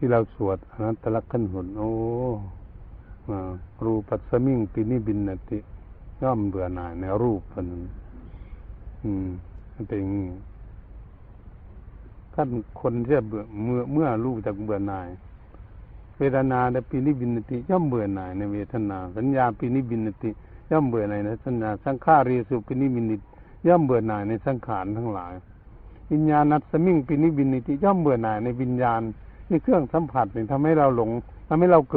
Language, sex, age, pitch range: Thai, male, 60-79, 95-125 Hz